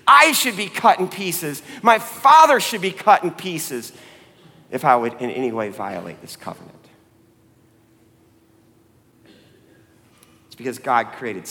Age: 50-69